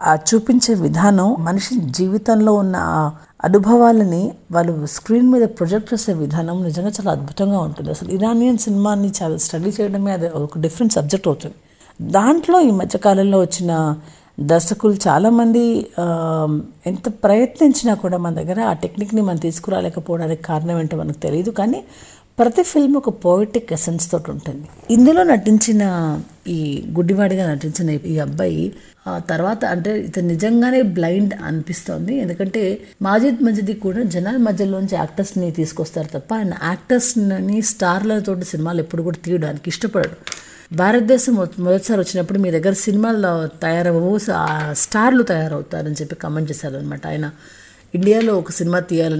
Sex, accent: female, native